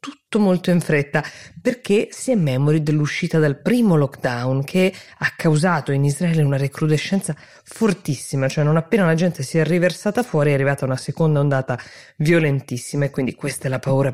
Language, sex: Italian, female